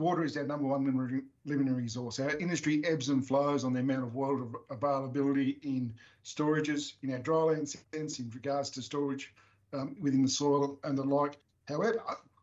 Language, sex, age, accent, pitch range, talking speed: English, male, 50-69, Australian, 130-150 Hz, 180 wpm